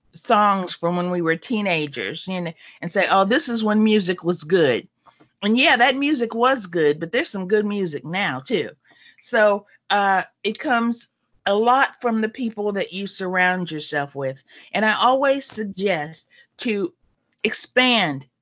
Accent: American